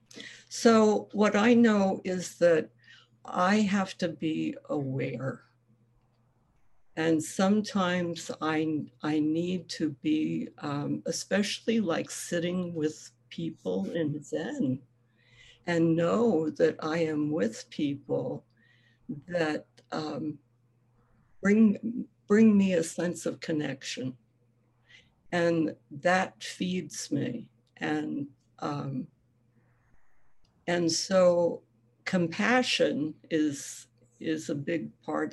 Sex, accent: female, American